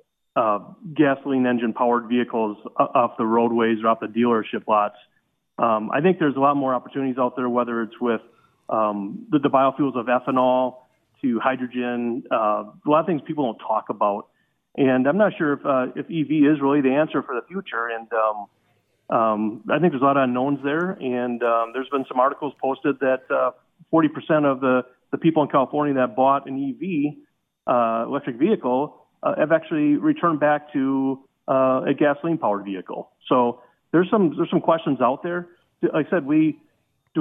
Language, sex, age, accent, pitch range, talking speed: English, male, 40-59, American, 120-155 Hz, 185 wpm